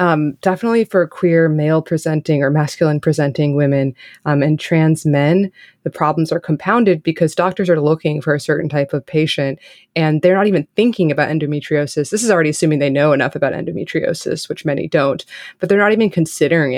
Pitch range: 150-180 Hz